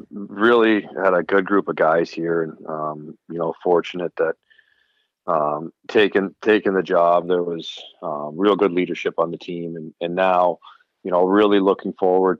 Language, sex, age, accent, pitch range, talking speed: English, male, 40-59, American, 75-90 Hz, 175 wpm